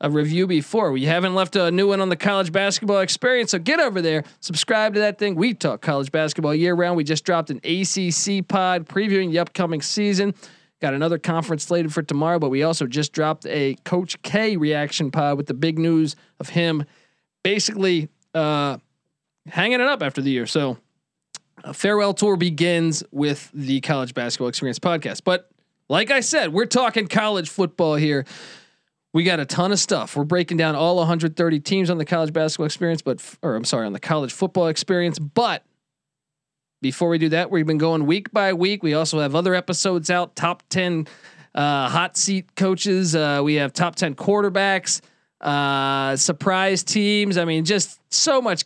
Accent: American